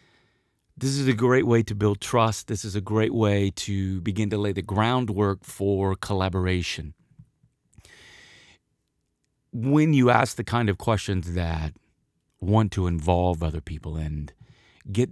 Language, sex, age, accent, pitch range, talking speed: English, male, 30-49, American, 95-140 Hz, 145 wpm